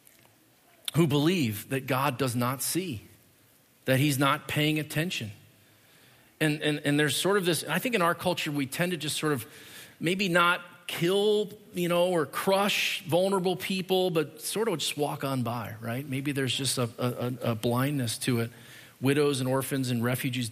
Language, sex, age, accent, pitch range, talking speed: English, male, 40-59, American, 130-180 Hz, 180 wpm